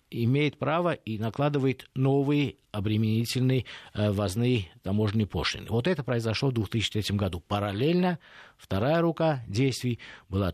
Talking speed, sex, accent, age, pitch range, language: 120 wpm, male, native, 50-69, 100-140 Hz, Russian